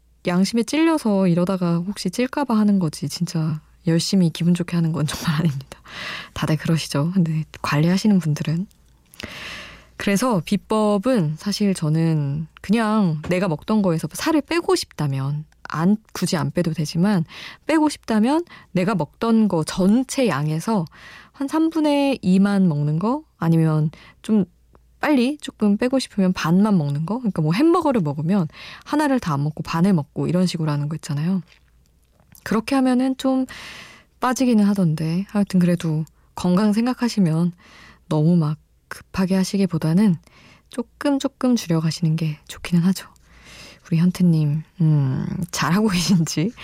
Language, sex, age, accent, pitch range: Korean, female, 20-39, native, 160-215 Hz